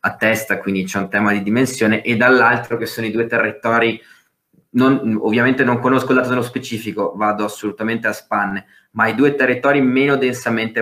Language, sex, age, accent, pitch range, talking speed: Italian, male, 20-39, native, 105-120 Hz, 170 wpm